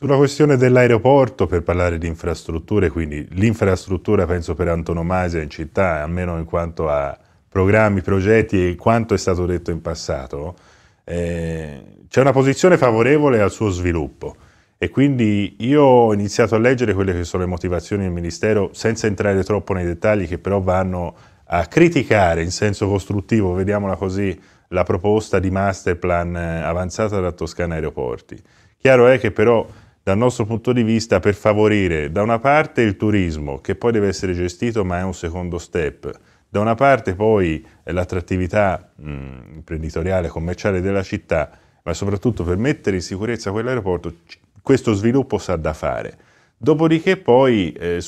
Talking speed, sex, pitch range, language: 155 wpm, male, 85-110 Hz, Italian